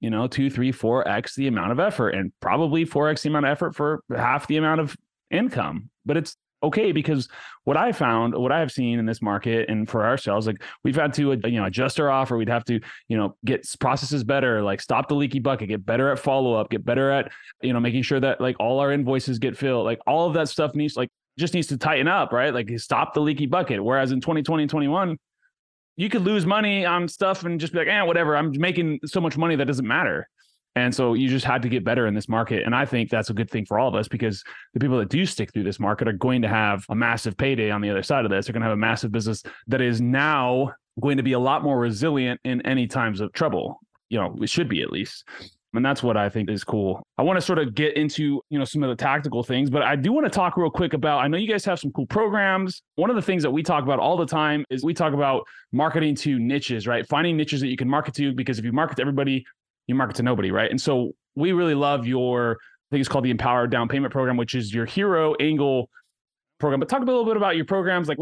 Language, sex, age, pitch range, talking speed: English, male, 20-39, 120-155 Hz, 265 wpm